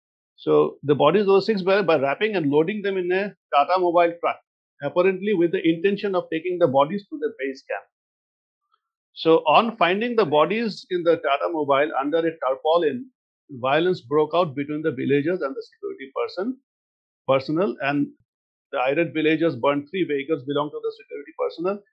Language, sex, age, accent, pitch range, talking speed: English, male, 50-69, Indian, 140-185 Hz, 175 wpm